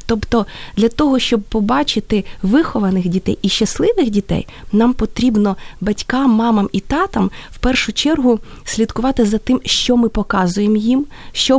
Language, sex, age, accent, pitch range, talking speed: Ukrainian, female, 20-39, native, 195-240 Hz, 140 wpm